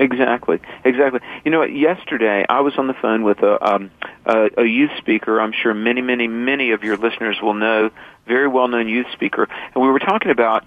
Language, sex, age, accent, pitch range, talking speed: English, male, 40-59, American, 110-130 Hz, 200 wpm